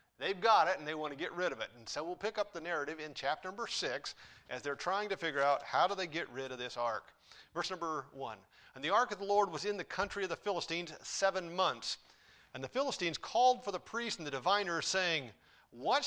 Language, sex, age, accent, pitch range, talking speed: English, male, 50-69, American, 145-205 Hz, 245 wpm